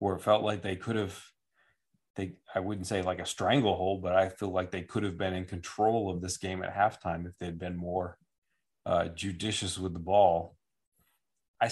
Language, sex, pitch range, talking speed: English, male, 95-105 Hz, 200 wpm